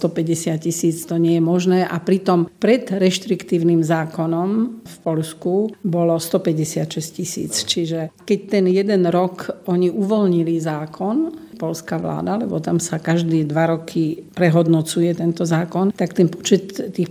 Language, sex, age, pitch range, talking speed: Slovak, female, 50-69, 165-195 Hz, 135 wpm